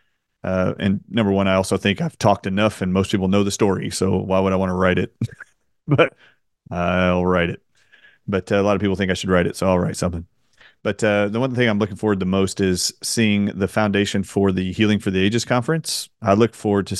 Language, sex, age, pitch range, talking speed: English, male, 30-49, 95-105 Hz, 235 wpm